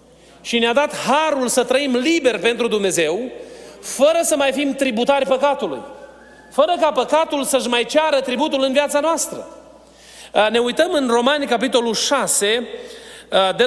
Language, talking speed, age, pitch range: Romanian, 140 wpm, 30-49, 210-280 Hz